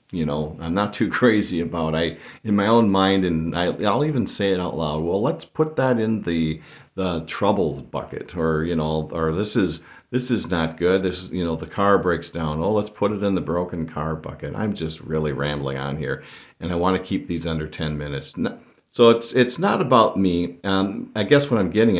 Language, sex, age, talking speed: English, male, 50-69, 225 wpm